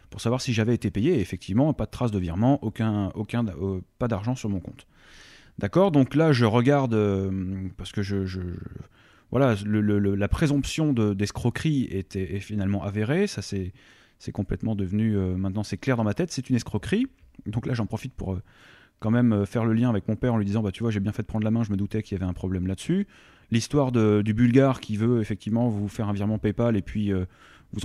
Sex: male